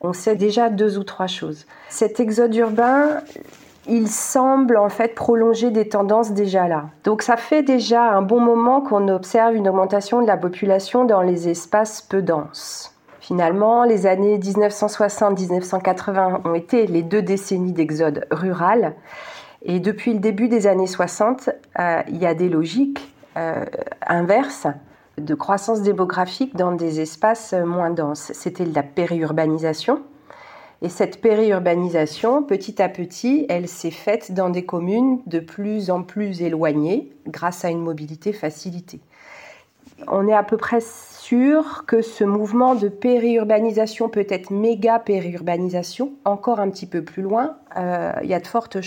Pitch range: 180-230 Hz